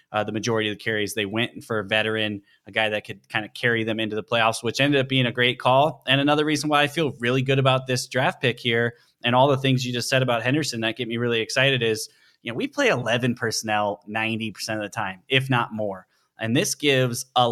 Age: 20-39